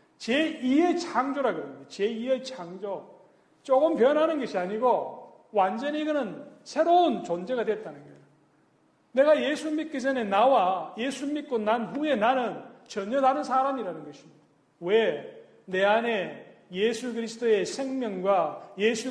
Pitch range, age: 175-255 Hz, 40-59